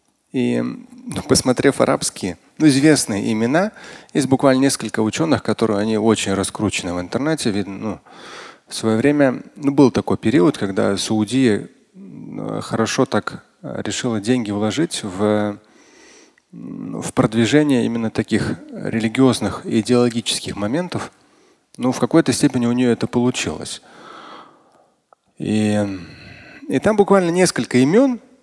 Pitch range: 110-140 Hz